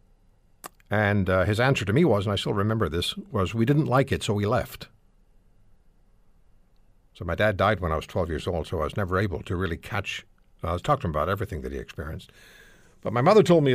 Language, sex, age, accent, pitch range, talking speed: English, male, 60-79, American, 95-135 Hz, 235 wpm